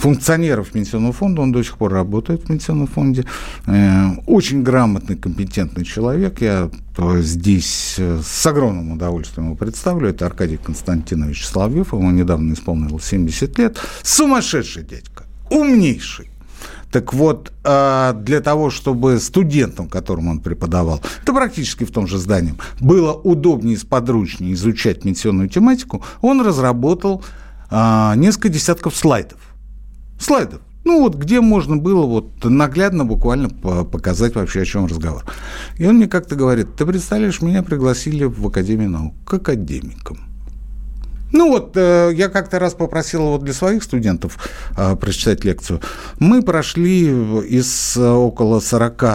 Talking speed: 135 wpm